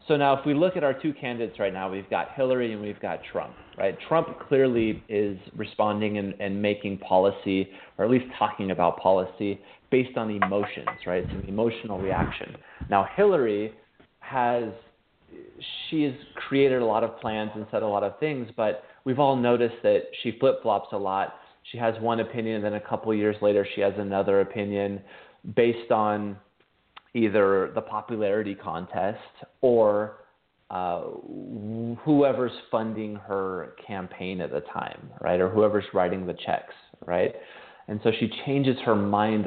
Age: 30-49